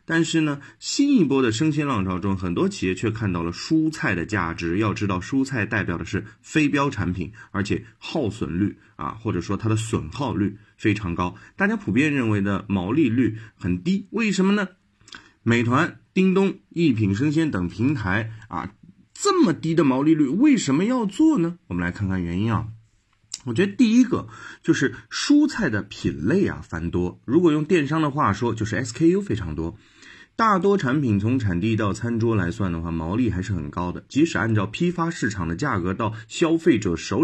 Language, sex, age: Chinese, male, 30-49